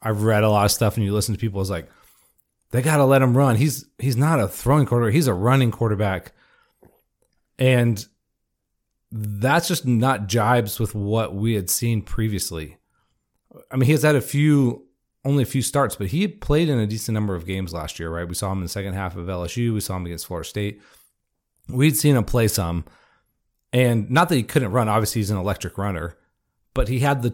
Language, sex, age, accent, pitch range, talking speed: English, male, 30-49, American, 105-125 Hz, 215 wpm